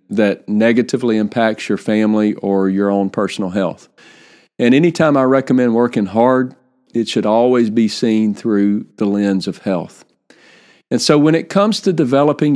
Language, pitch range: English, 115-145 Hz